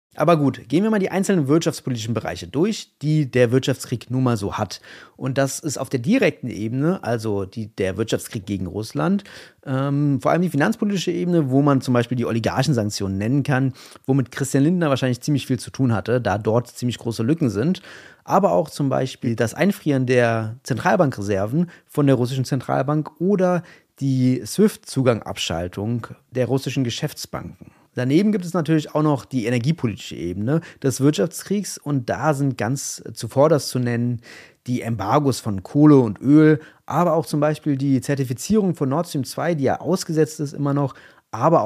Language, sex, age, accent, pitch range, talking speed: German, male, 30-49, German, 120-150 Hz, 170 wpm